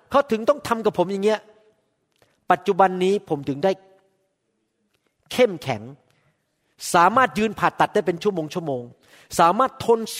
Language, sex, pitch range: Thai, male, 165-235 Hz